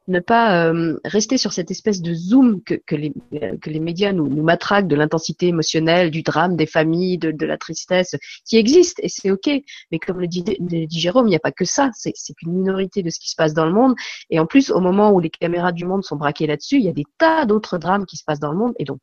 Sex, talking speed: female, 280 wpm